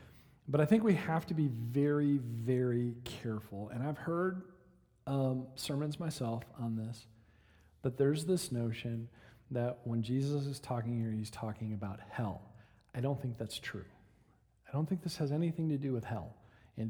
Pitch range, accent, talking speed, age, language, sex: 115-165 Hz, American, 170 wpm, 40-59, English, male